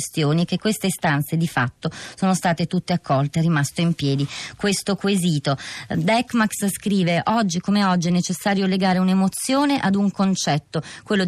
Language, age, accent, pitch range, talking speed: Italian, 30-49, native, 160-205 Hz, 150 wpm